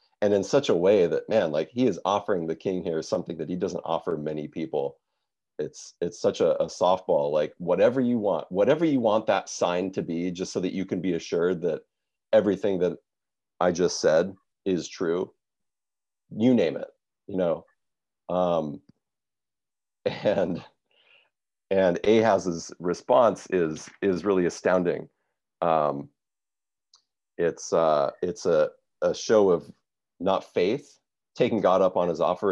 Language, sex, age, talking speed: English, male, 40-59, 155 wpm